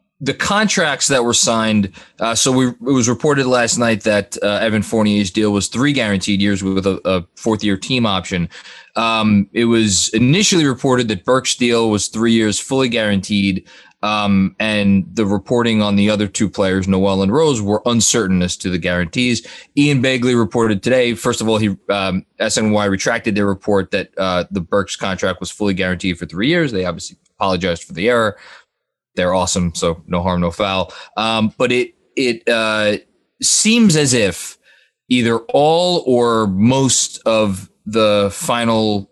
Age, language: 20-39, English